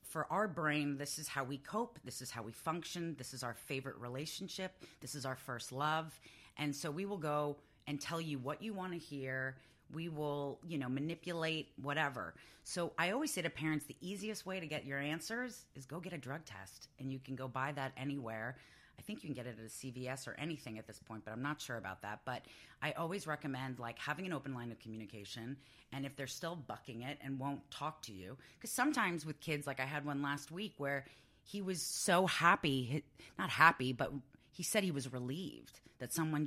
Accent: American